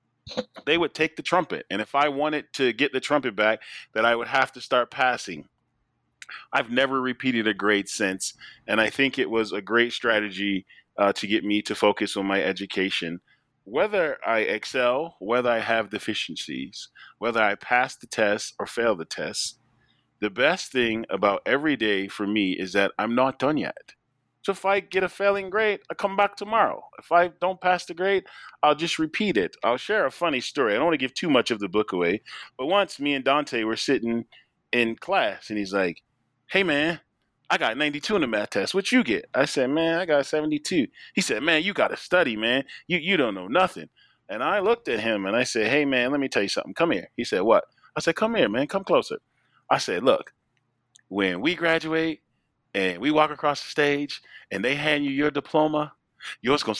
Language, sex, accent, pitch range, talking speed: English, male, American, 110-165 Hz, 210 wpm